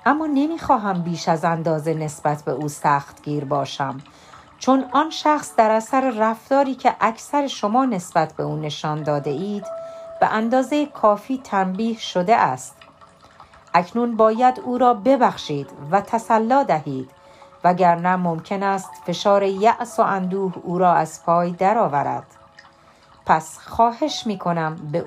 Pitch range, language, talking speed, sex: 155-245 Hz, Persian, 135 wpm, female